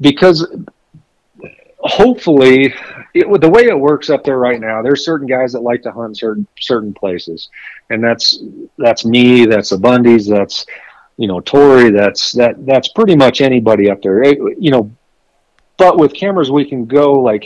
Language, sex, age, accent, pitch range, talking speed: English, male, 50-69, American, 110-140 Hz, 170 wpm